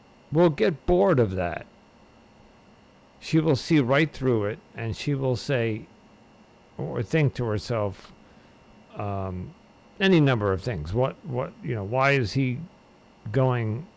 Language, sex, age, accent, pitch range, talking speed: English, male, 50-69, American, 105-140 Hz, 135 wpm